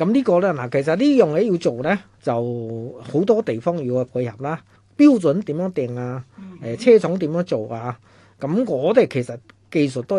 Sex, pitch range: male, 125-185 Hz